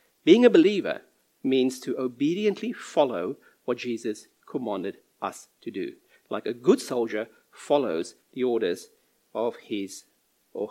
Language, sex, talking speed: English, male, 130 wpm